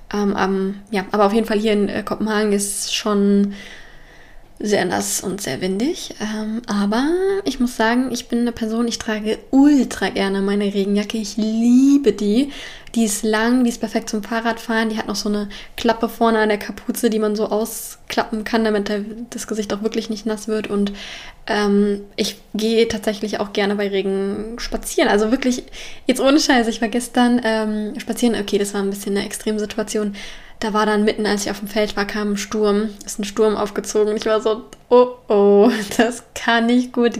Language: German